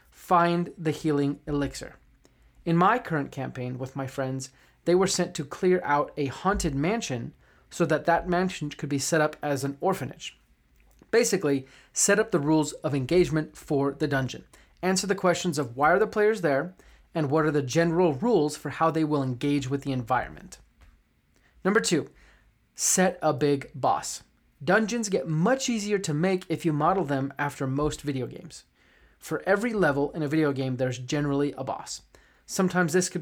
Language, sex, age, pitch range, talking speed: English, male, 30-49, 135-175 Hz, 175 wpm